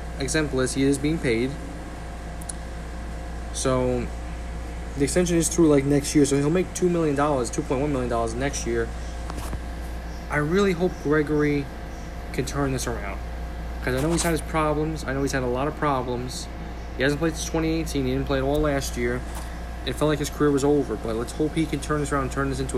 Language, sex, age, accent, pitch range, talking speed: English, male, 20-39, American, 85-145 Hz, 200 wpm